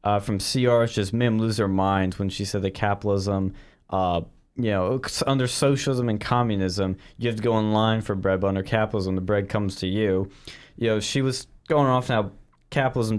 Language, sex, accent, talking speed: English, male, American, 200 wpm